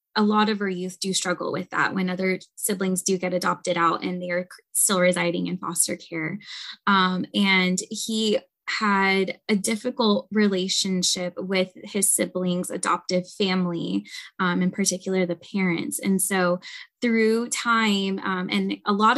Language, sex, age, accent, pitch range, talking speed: English, female, 20-39, American, 185-210 Hz, 155 wpm